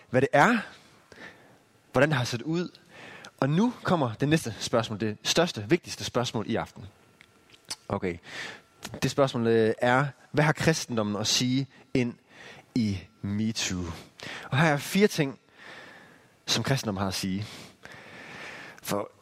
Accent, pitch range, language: native, 115-155 Hz, Danish